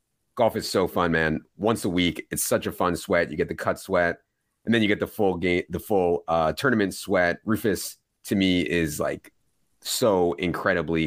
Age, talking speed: 30-49, 200 wpm